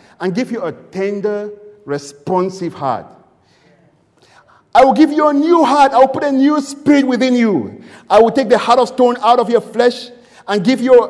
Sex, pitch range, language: male, 185-245 Hz, English